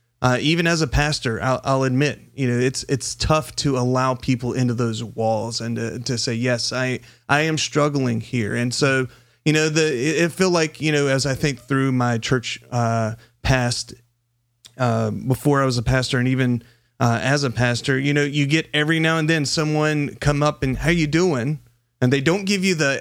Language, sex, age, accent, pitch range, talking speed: English, male, 30-49, American, 115-140 Hz, 210 wpm